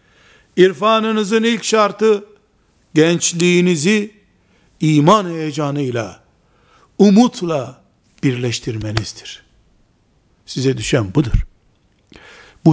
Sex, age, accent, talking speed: male, 60-79, native, 55 wpm